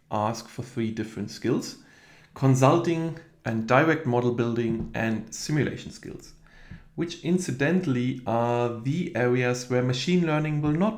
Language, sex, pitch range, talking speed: English, male, 115-160 Hz, 125 wpm